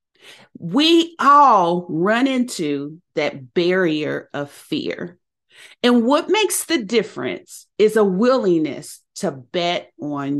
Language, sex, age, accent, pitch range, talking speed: English, female, 40-59, American, 175-260 Hz, 110 wpm